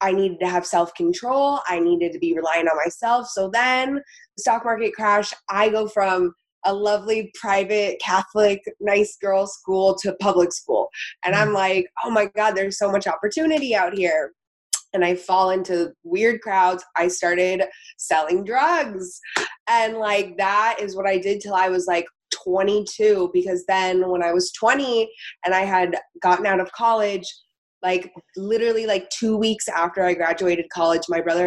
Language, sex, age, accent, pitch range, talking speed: English, female, 20-39, American, 180-210 Hz, 170 wpm